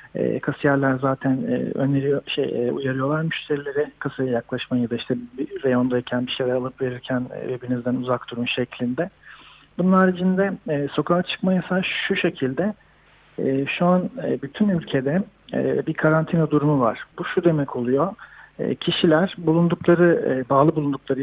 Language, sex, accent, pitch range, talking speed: Turkish, male, native, 135-170 Hz, 150 wpm